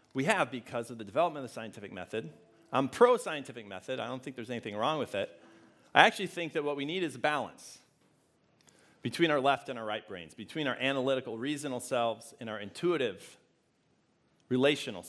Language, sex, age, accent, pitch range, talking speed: English, male, 40-59, American, 125-175 Hz, 185 wpm